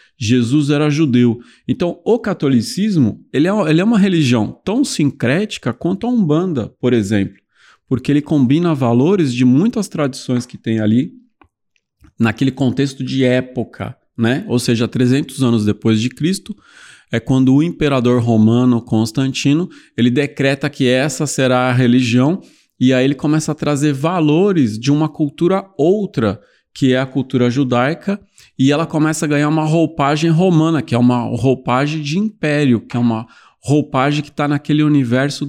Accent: Brazilian